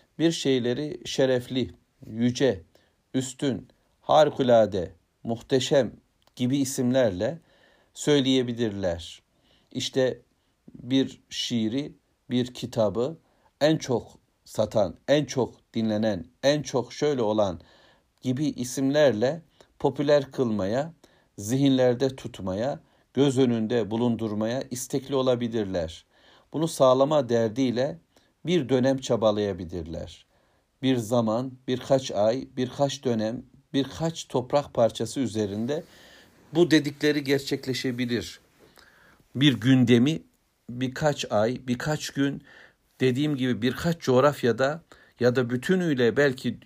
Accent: native